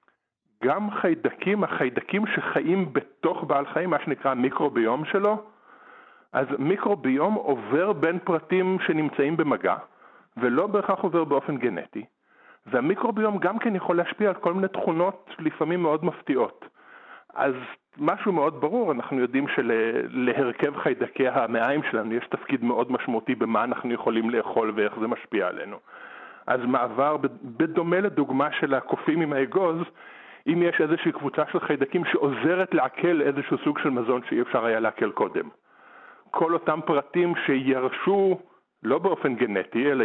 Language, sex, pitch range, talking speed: Hebrew, male, 135-180 Hz, 135 wpm